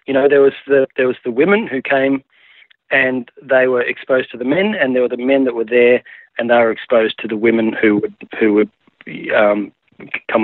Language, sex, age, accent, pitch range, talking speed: English, male, 30-49, Australian, 110-130 Hz, 230 wpm